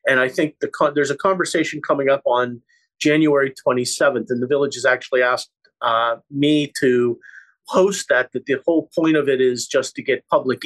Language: English